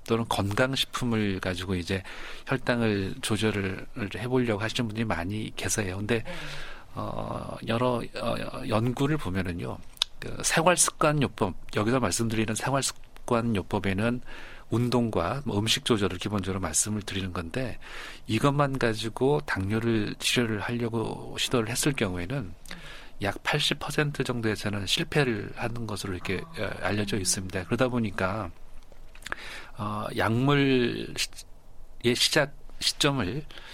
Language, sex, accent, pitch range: Korean, male, native, 100-130 Hz